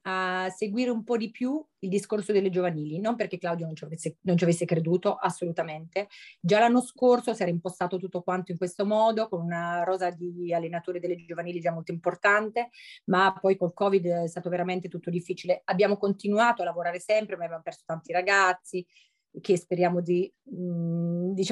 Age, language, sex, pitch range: 30-49, Italian, female, 175-225 Hz